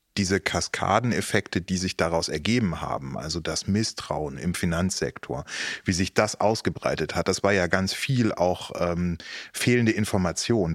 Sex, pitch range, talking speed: male, 85-105 Hz, 145 wpm